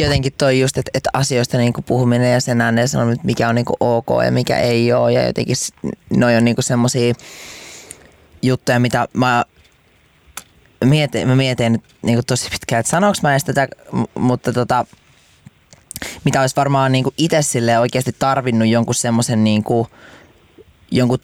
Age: 20-39